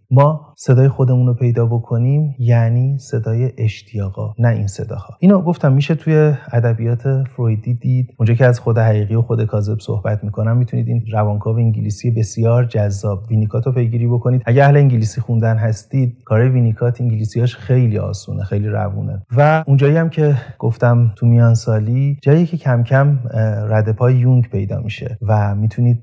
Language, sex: English, male